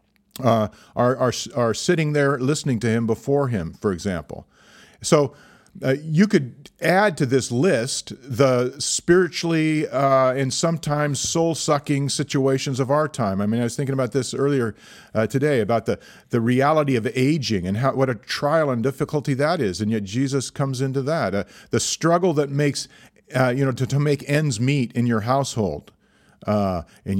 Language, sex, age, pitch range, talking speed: English, male, 40-59, 110-145 Hz, 175 wpm